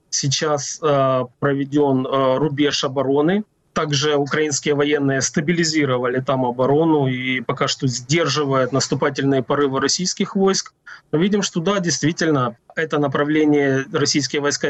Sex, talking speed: male, 120 wpm